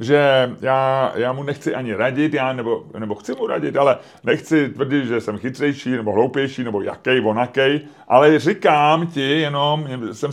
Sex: male